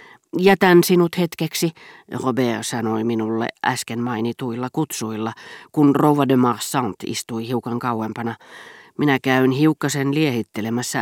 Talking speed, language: 110 wpm, Finnish